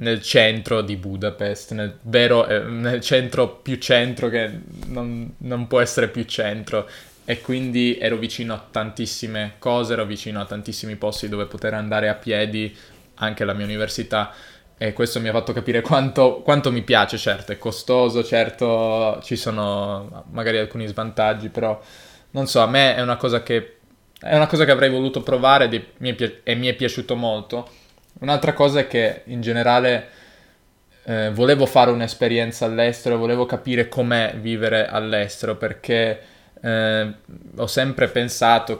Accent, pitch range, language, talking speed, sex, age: native, 110-120 Hz, Italian, 155 wpm, male, 20-39